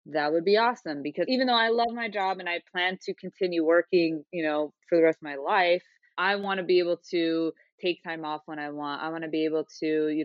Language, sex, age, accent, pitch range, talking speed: English, female, 20-39, American, 150-180 Hz, 260 wpm